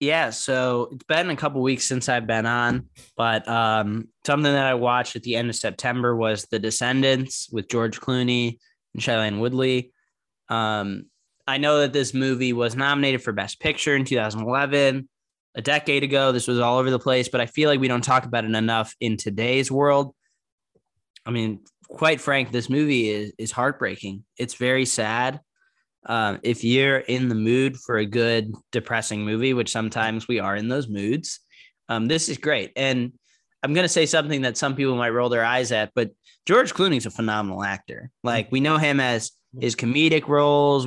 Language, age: English, 10-29